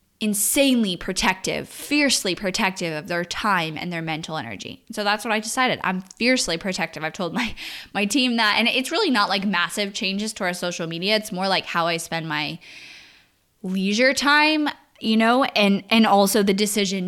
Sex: female